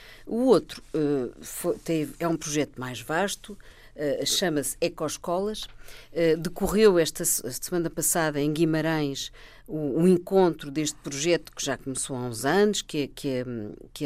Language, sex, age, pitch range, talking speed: Portuguese, female, 50-69, 145-195 Hz, 125 wpm